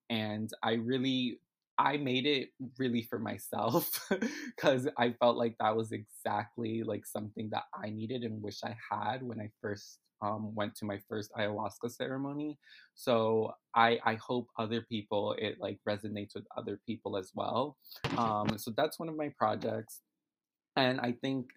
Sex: male